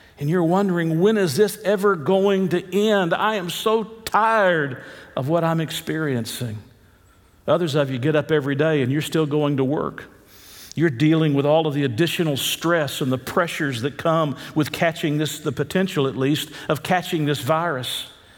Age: 50-69